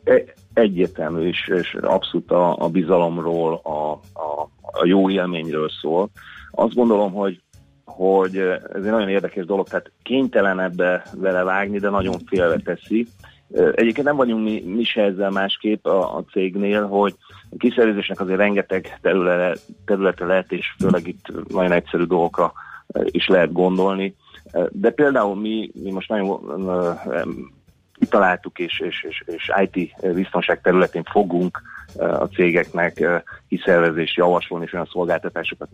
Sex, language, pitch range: male, Hungarian, 90-110 Hz